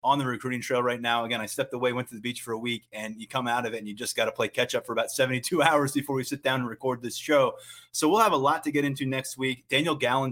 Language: English